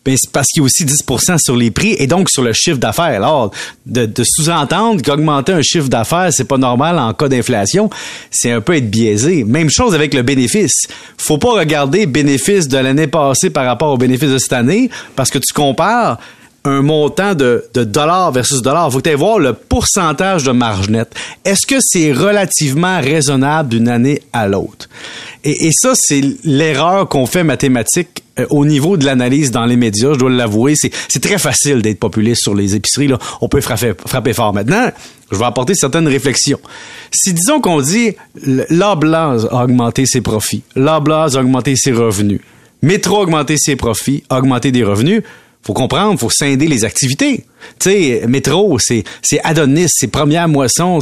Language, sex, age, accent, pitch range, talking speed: French, male, 30-49, Canadian, 125-175 Hz, 190 wpm